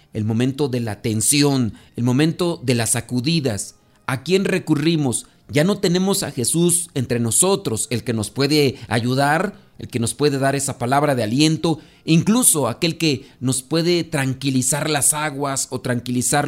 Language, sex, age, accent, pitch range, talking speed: Spanish, male, 40-59, Mexican, 125-155 Hz, 160 wpm